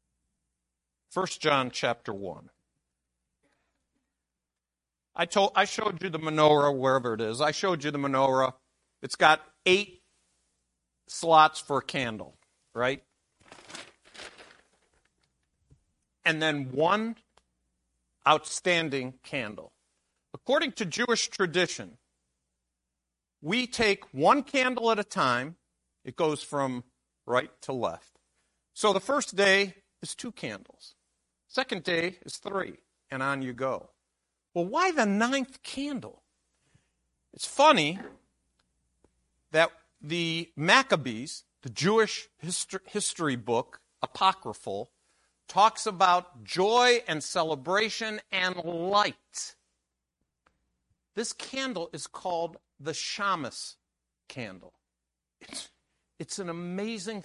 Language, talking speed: English, 100 wpm